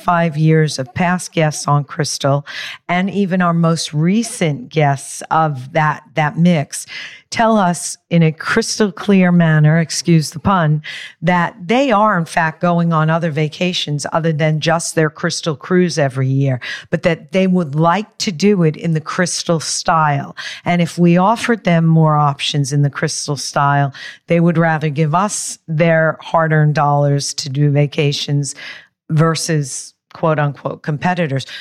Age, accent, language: 50-69, American, English